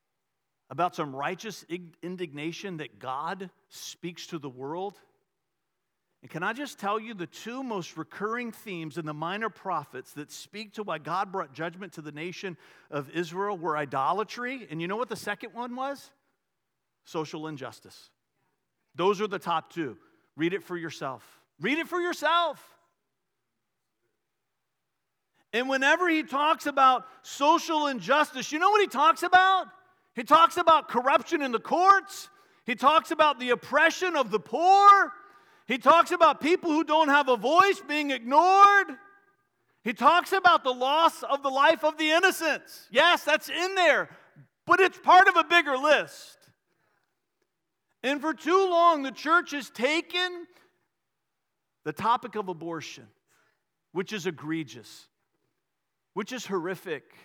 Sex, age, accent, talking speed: male, 40-59, American, 150 wpm